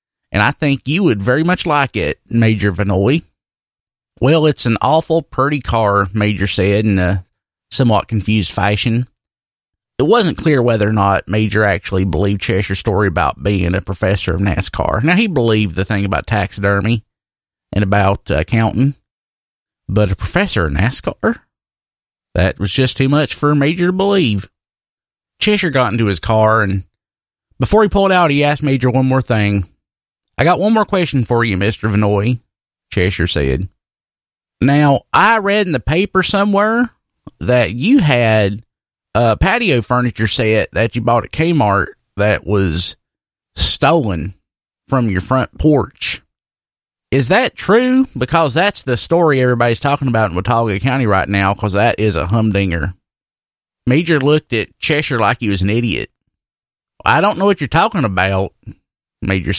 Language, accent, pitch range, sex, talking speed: English, American, 100-140 Hz, male, 155 wpm